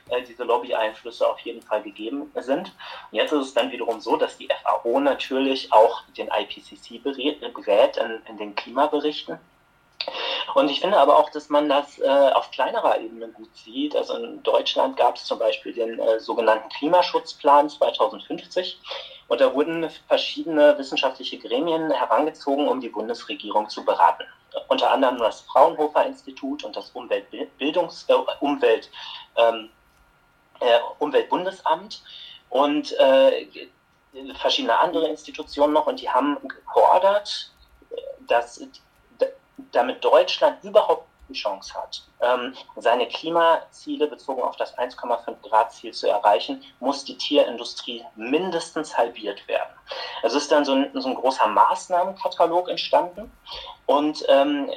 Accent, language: German, German